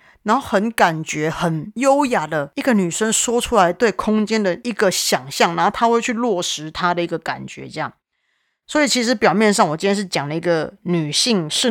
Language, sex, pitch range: Chinese, female, 165-220 Hz